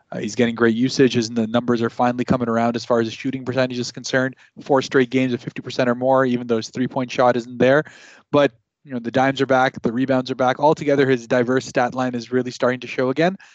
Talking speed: 250 wpm